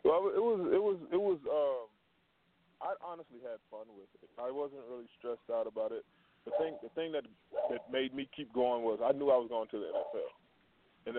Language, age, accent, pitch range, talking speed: English, 20-39, American, 115-135 Hz, 220 wpm